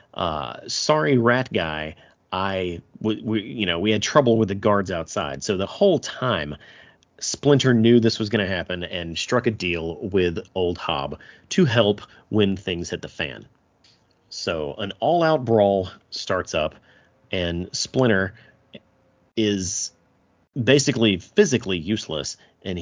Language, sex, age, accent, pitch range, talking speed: English, male, 30-49, American, 95-120 Hz, 140 wpm